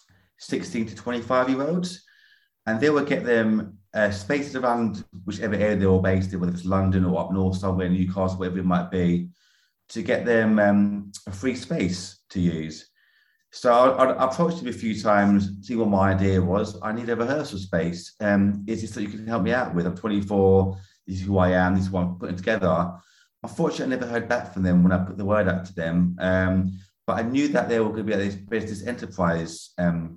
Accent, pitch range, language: British, 95-115 Hz, English